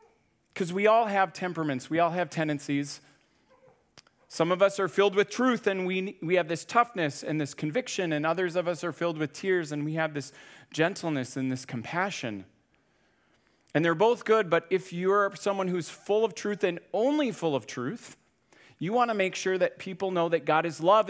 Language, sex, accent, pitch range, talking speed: English, male, American, 145-190 Hz, 200 wpm